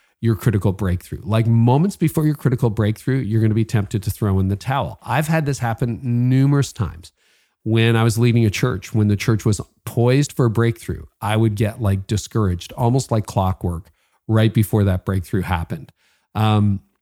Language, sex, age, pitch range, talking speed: English, male, 40-59, 100-125 Hz, 185 wpm